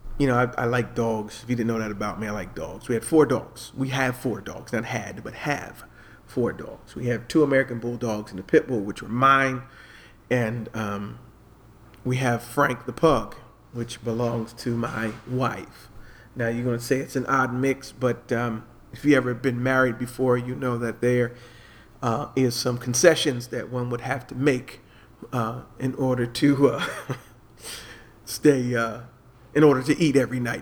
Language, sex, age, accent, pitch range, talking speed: English, male, 40-59, American, 115-130 Hz, 190 wpm